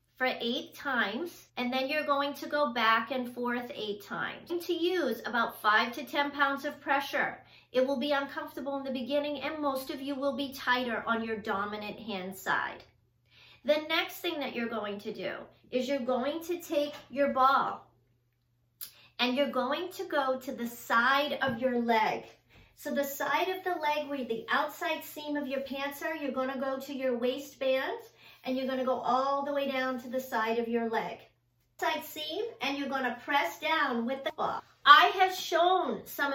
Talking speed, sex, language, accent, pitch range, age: 195 wpm, female, English, American, 245-295 Hz, 40-59